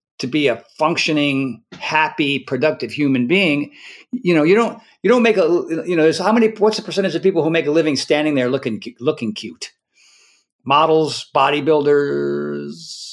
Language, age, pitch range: English, 50-69, 125-180 Hz